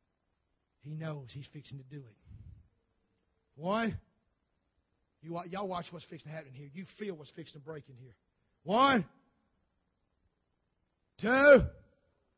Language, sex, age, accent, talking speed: English, male, 50-69, American, 125 wpm